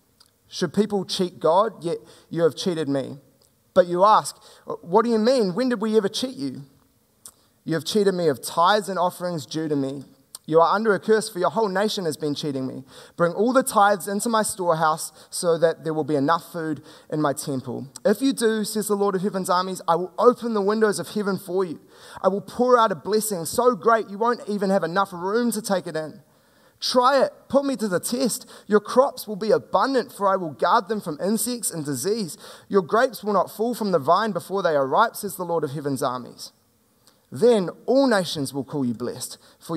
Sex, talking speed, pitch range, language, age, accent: male, 220 wpm, 155-215 Hz, English, 20-39, Australian